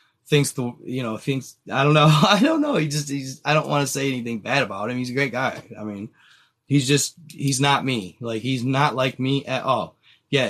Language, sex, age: English, male, 20-39